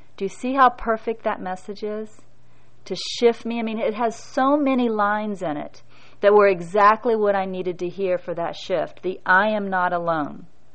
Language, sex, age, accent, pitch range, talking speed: English, female, 40-59, American, 180-215 Hz, 195 wpm